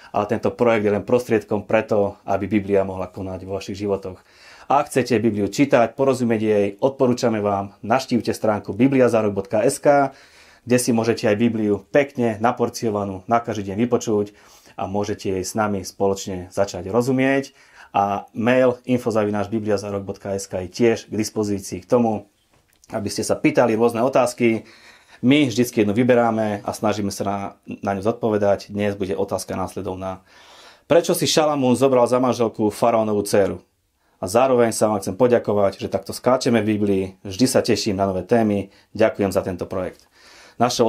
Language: Slovak